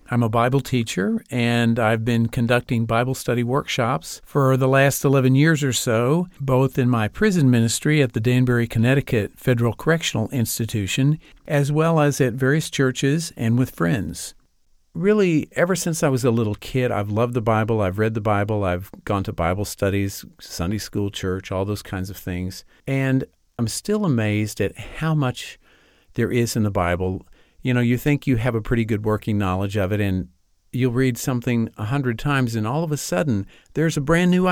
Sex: male